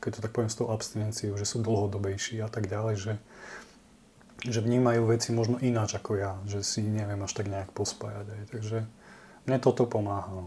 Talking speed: 190 wpm